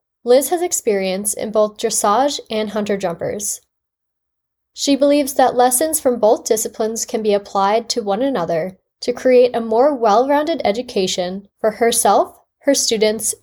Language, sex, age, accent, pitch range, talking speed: English, female, 10-29, American, 200-255 Hz, 145 wpm